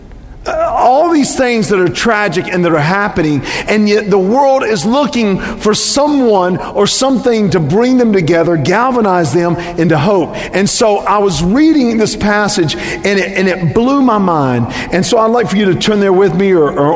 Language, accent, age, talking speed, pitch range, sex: English, American, 50-69, 190 wpm, 165-215 Hz, male